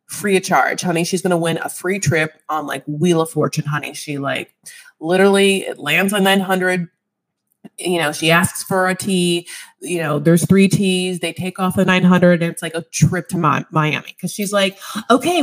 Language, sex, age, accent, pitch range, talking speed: English, female, 20-39, American, 165-215 Hz, 205 wpm